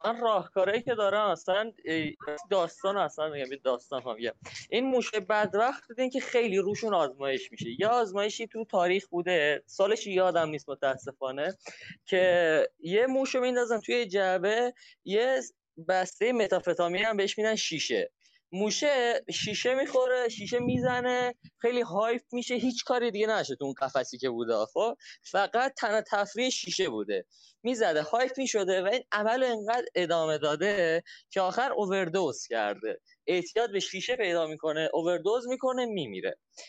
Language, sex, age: Persian, male, 20-39